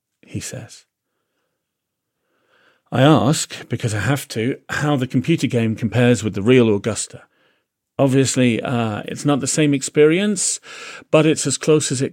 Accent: British